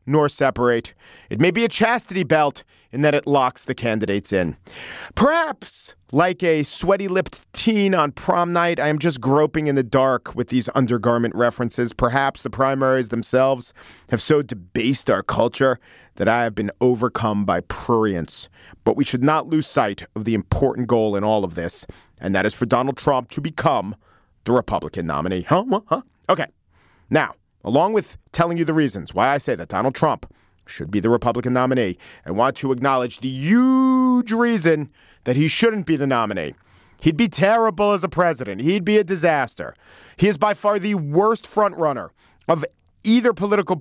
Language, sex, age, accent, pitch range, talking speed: English, male, 40-59, American, 120-175 Hz, 175 wpm